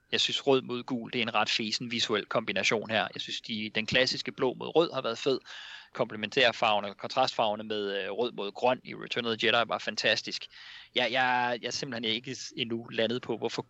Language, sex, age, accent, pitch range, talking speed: English, male, 30-49, Danish, 110-135 Hz, 210 wpm